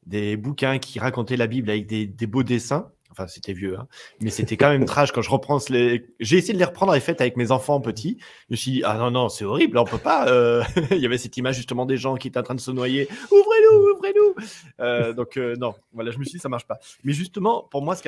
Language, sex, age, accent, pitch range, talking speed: French, male, 30-49, French, 115-145 Hz, 280 wpm